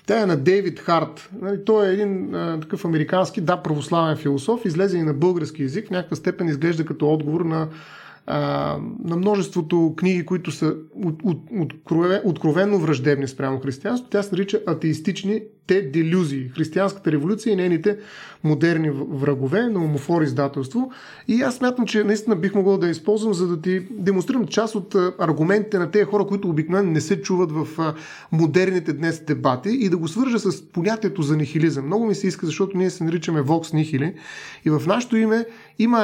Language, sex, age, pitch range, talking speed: Bulgarian, male, 30-49, 155-195 Hz, 165 wpm